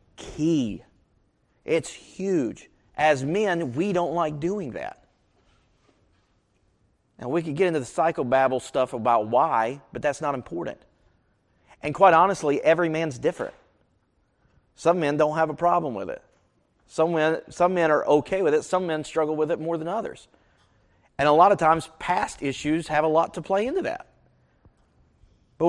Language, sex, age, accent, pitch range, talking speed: English, male, 30-49, American, 130-180 Hz, 160 wpm